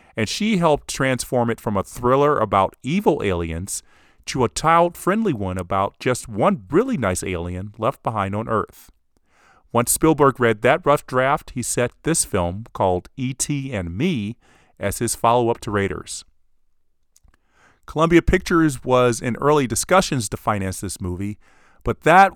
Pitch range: 100-145 Hz